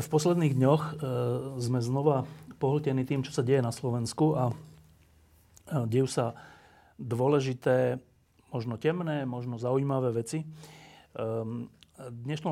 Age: 40-59